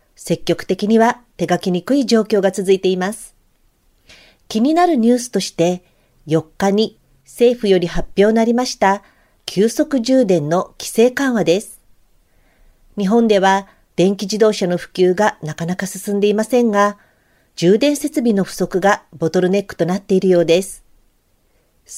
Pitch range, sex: 180-235 Hz, female